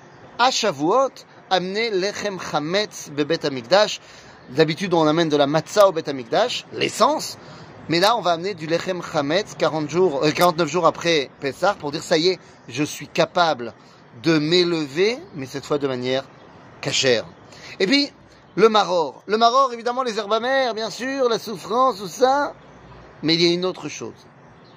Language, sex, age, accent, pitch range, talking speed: French, male, 30-49, French, 155-210 Hz, 165 wpm